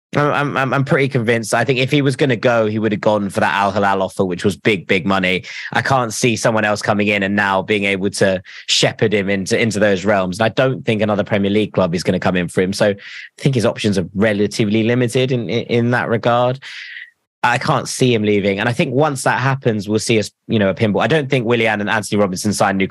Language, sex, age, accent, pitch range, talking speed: English, male, 20-39, British, 100-130 Hz, 260 wpm